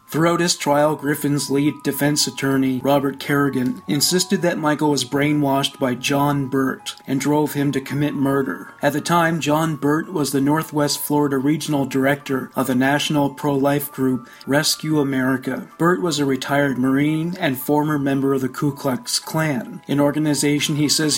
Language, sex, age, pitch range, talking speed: English, male, 40-59, 135-155 Hz, 165 wpm